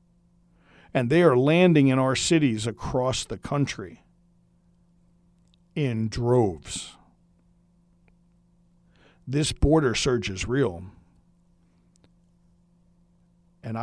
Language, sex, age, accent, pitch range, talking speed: English, male, 50-69, American, 110-170 Hz, 80 wpm